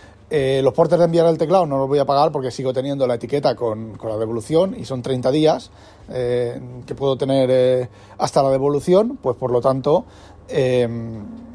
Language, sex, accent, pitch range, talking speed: Spanish, male, Spanish, 120-150 Hz, 195 wpm